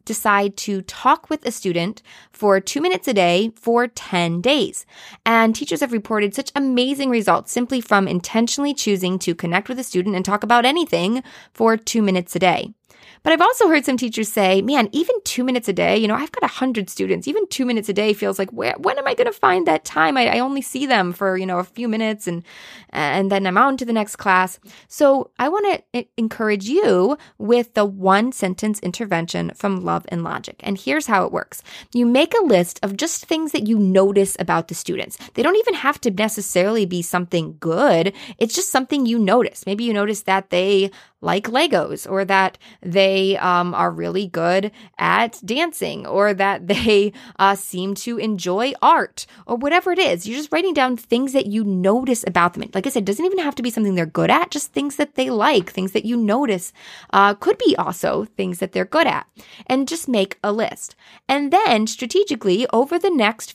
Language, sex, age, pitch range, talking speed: English, female, 20-39, 195-260 Hz, 210 wpm